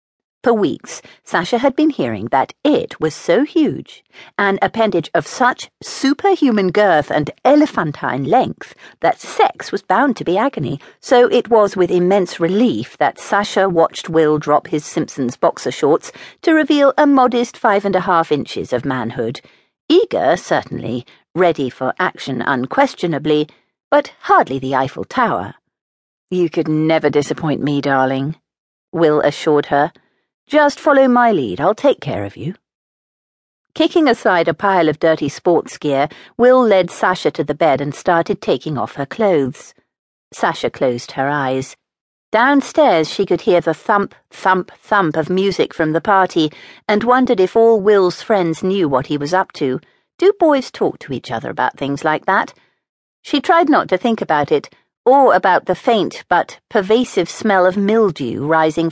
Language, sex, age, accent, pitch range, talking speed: English, female, 50-69, British, 150-235 Hz, 160 wpm